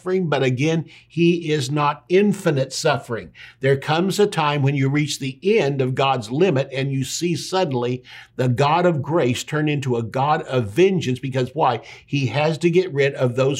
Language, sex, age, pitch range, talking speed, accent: English, male, 60-79, 135-200 Hz, 185 wpm, American